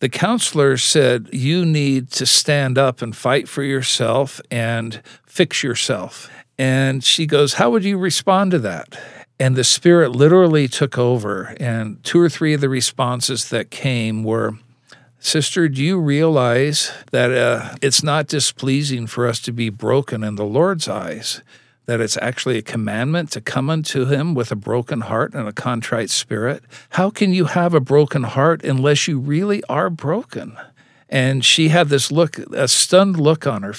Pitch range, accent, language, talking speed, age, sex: 125-160 Hz, American, English, 170 wpm, 60-79, male